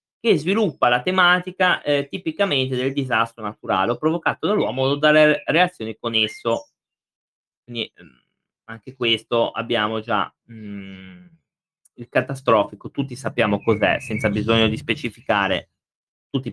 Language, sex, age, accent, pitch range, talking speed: Italian, male, 20-39, native, 115-160 Hz, 125 wpm